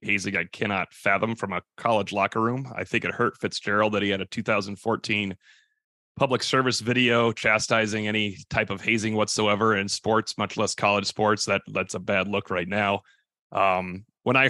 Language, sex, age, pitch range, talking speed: English, male, 30-49, 100-125 Hz, 180 wpm